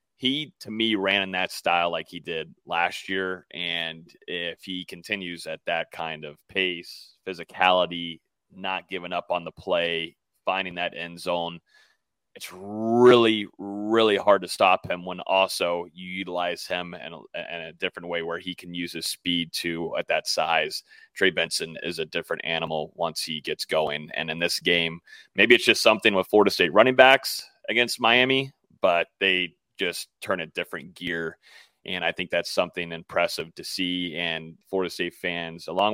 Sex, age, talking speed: male, 30-49, 175 wpm